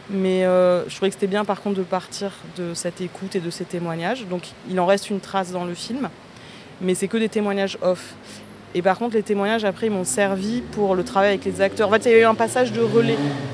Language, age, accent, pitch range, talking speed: French, 20-39, French, 170-200 Hz, 255 wpm